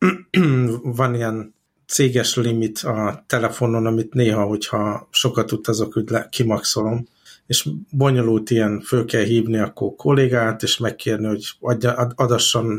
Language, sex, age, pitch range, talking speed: Hungarian, male, 50-69, 110-125 Hz, 115 wpm